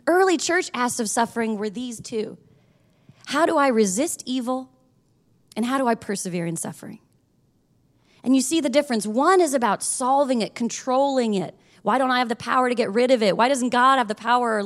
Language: English